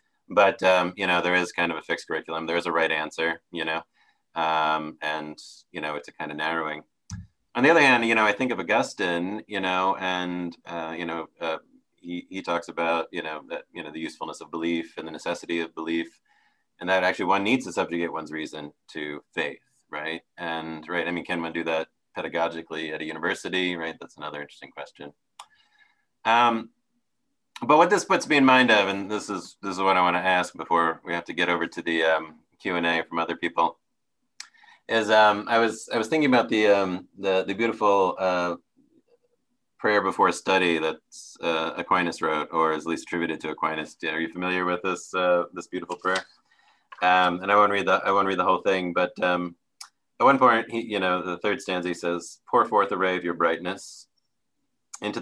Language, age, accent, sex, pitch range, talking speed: English, 30-49, American, male, 80-95 Hz, 210 wpm